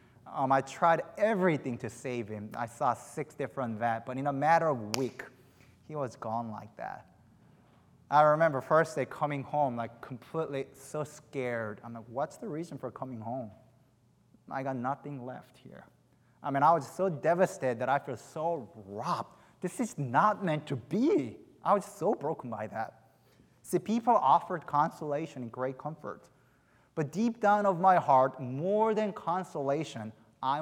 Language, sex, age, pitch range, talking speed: English, male, 20-39, 125-165 Hz, 170 wpm